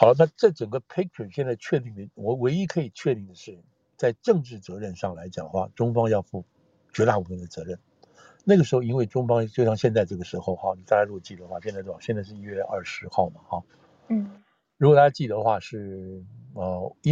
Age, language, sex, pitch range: 60-79, Chinese, male, 95-125 Hz